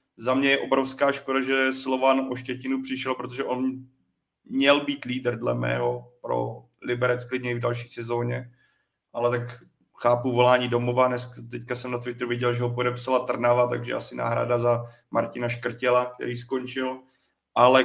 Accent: native